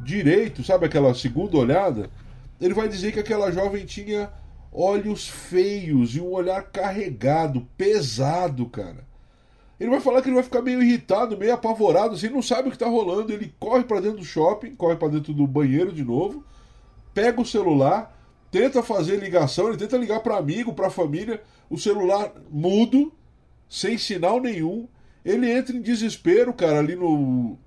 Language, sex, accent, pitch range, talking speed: Portuguese, male, Brazilian, 130-210 Hz, 165 wpm